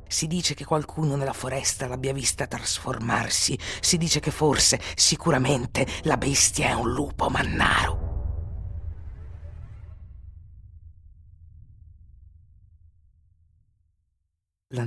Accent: native